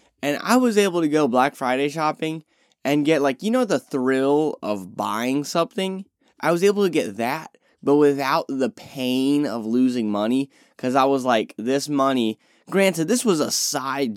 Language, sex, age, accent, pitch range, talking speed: English, male, 10-29, American, 120-180 Hz, 180 wpm